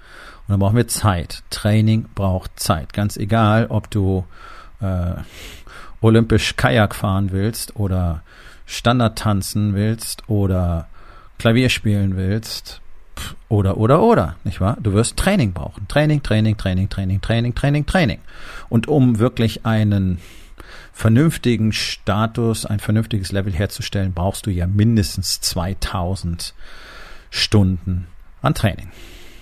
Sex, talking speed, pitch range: male, 120 wpm, 95-115 Hz